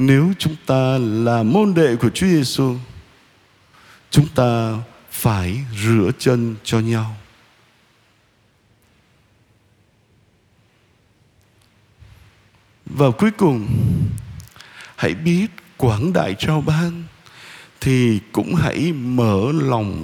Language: Vietnamese